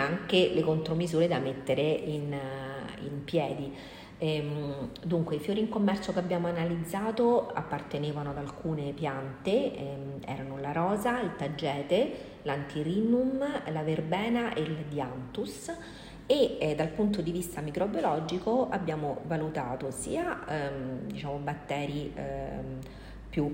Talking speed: 120 wpm